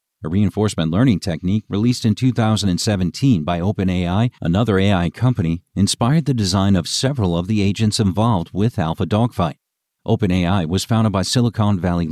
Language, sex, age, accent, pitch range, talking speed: English, male, 50-69, American, 90-115 Hz, 150 wpm